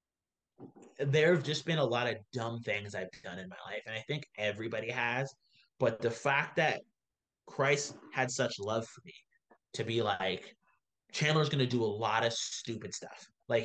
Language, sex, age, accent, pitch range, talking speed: English, male, 20-39, American, 115-140 Hz, 180 wpm